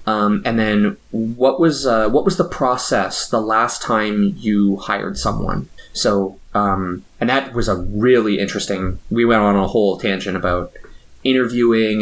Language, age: English, 20-39